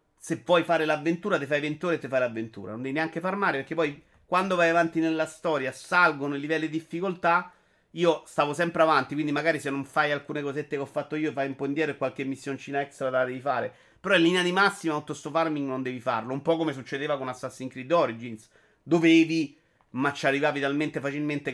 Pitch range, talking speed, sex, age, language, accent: 140-185 Hz, 215 wpm, male, 30-49, Italian, native